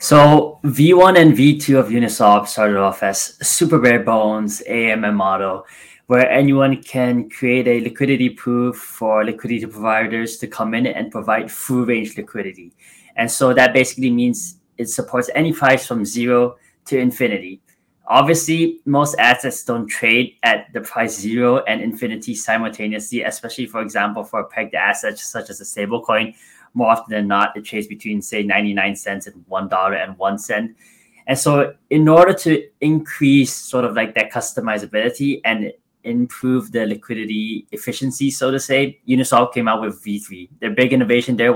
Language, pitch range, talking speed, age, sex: English, 110-135 Hz, 160 wpm, 20-39, male